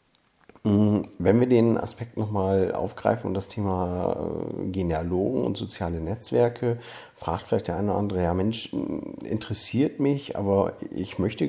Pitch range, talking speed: 90-110 Hz, 135 wpm